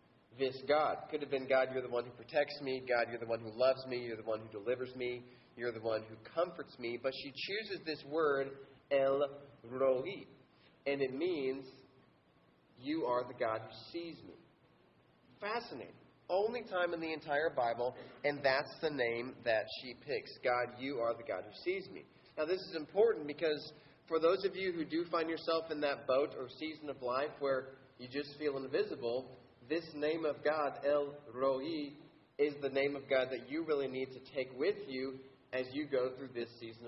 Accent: American